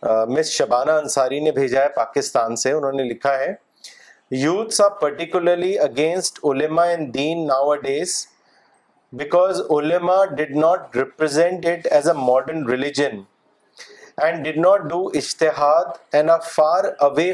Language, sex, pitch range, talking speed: Urdu, male, 145-185 Hz, 140 wpm